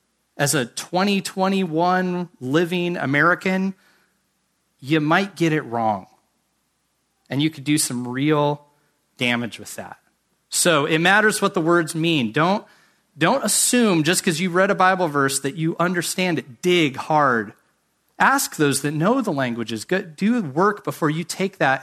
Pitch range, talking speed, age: 135-180 Hz, 150 wpm, 30-49